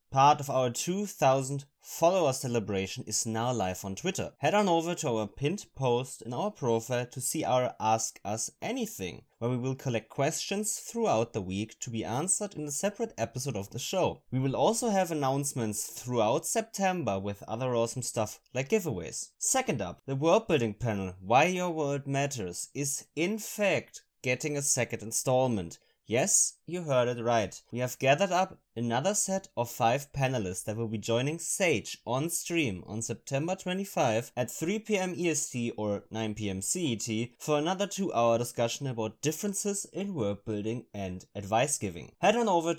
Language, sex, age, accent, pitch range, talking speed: English, male, 20-39, German, 115-165 Hz, 165 wpm